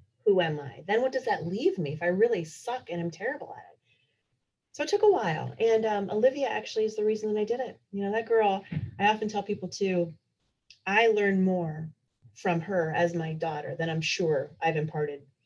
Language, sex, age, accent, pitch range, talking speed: English, female, 30-49, American, 155-205 Hz, 215 wpm